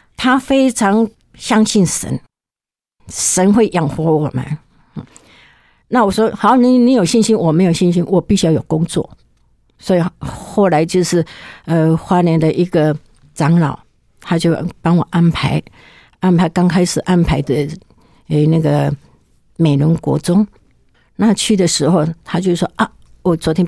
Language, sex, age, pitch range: Chinese, female, 60-79, 155-190 Hz